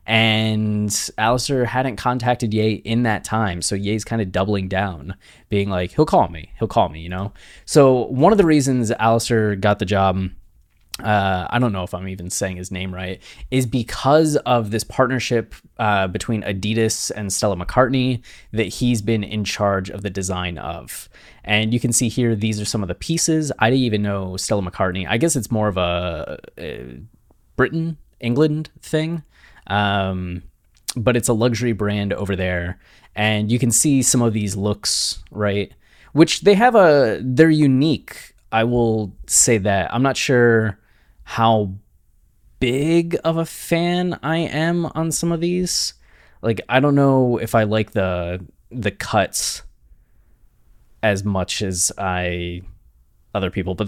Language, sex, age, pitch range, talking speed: English, male, 20-39, 95-130 Hz, 165 wpm